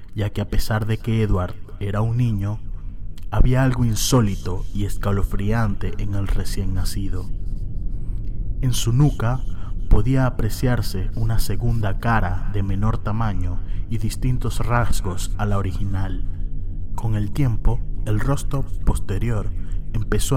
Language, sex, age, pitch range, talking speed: Spanish, male, 30-49, 95-115 Hz, 125 wpm